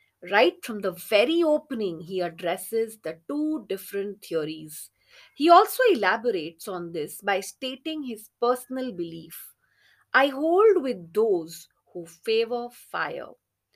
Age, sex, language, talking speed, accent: 30-49, female, English, 120 wpm, Indian